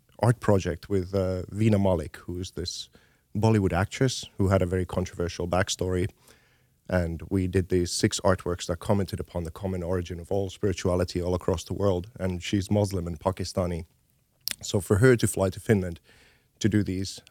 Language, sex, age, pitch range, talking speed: Finnish, male, 30-49, 90-105 Hz, 175 wpm